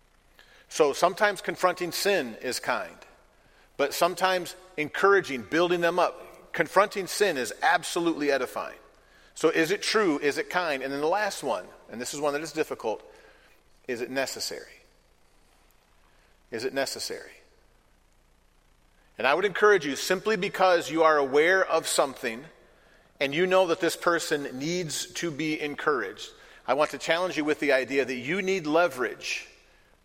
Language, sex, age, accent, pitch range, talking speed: English, male, 40-59, American, 140-185 Hz, 150 wpm